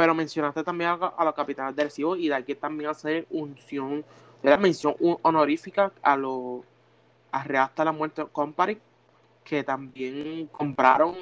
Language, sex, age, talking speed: Spanish, male, 20-39, 145 wpm